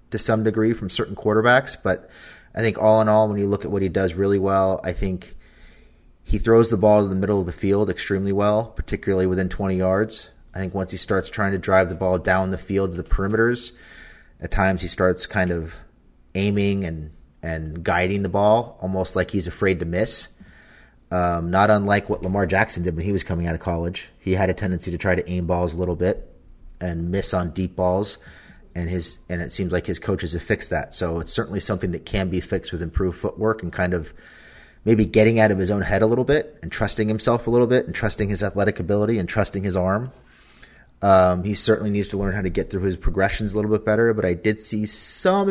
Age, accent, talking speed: 30-49, American, 230 wpm